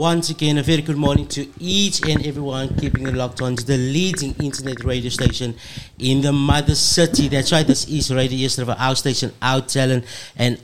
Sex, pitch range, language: male, 130-160 Hz, English